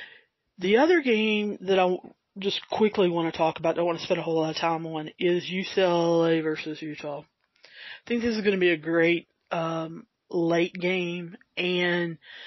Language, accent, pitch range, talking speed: English, American, 165-200 Hz, 190 wpm